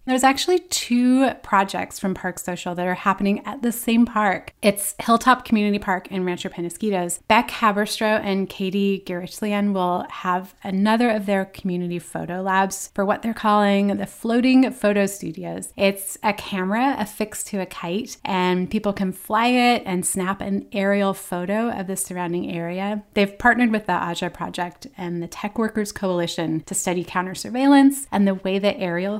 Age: 30-49